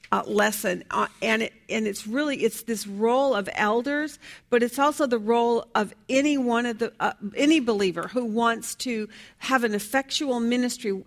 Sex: female